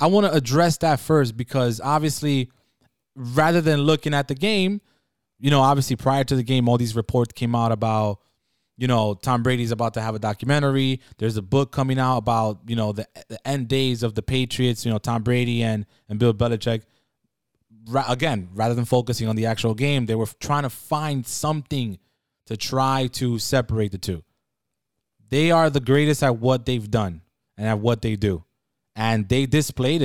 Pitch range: 115-140 Hz